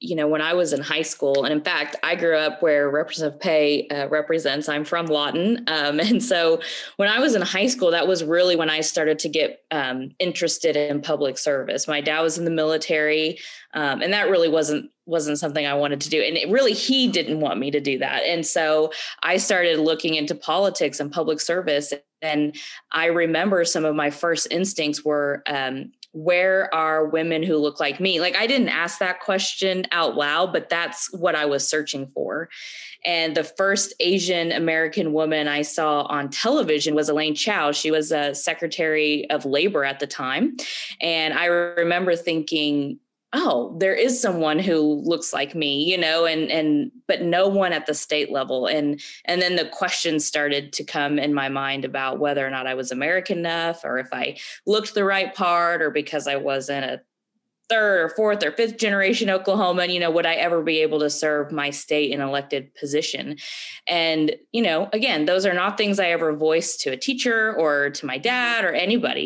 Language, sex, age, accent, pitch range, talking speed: English, female, 20-39, American, 150-180 Hz, 200 wpm